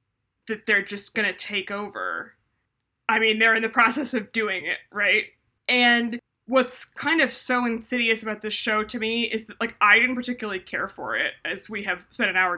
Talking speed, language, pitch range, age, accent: 205 wpm, English, 200-245 Hz, 20-39, American